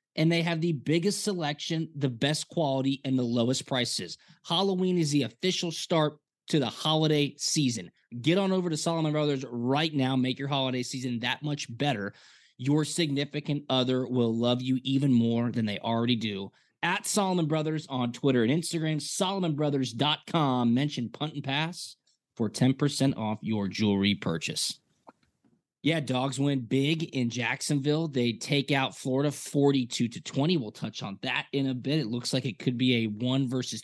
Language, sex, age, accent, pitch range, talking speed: English, male, 20-39, American, 125-155 Hz, 170 wpm